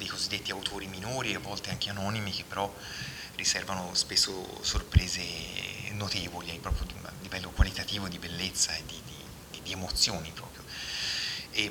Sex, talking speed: male, 150 wpm